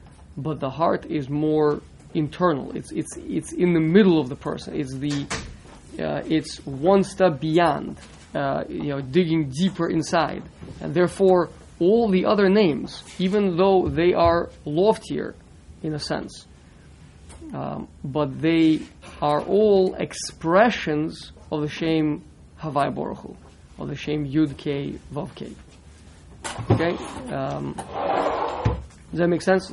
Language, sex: English, male